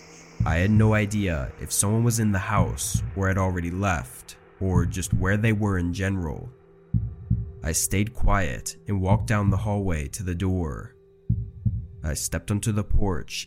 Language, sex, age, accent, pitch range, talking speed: English, male, 20-39, American, 90-105 Hz, 165 wpm